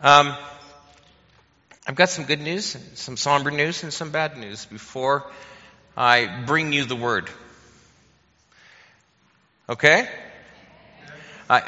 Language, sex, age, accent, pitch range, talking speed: English, male, 50-69, American, 115-145 Hz, 115 wpm